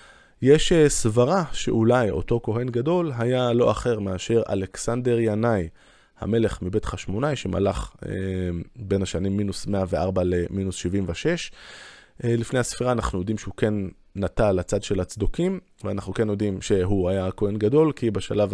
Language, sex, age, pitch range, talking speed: Hebrew, male, 20-39, 95-120 Hz, 140 wpm